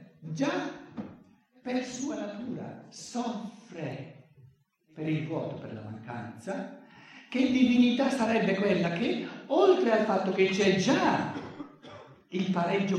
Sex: male